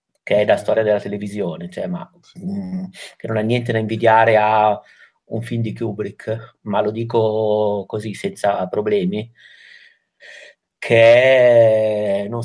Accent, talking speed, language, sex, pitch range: native, 140 wpm, Italian, male, 110-120 Hz